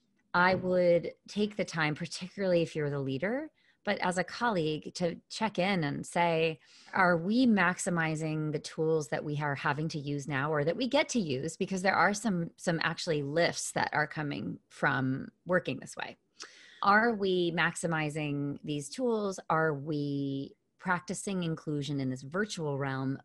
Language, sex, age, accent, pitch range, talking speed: English, female, 30-49, American, 150-185 Hz, 165 wpm